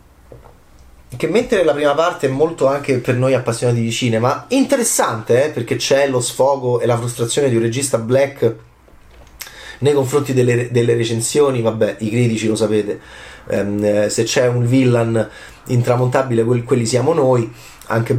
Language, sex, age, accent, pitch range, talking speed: Italian, male, 30-49, native, 115-145 Hz, 150 wpm